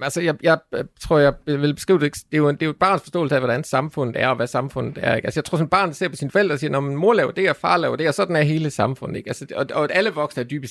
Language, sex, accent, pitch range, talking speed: Danish, male, native, 130-170 Hz, 340 wpm